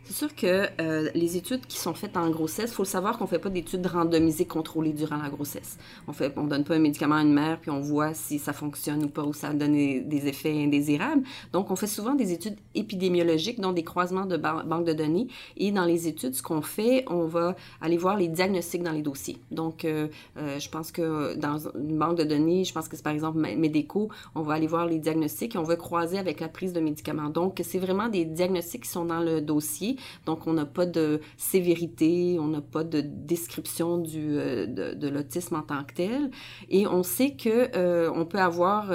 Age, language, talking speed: 30-49, French, 230 wpm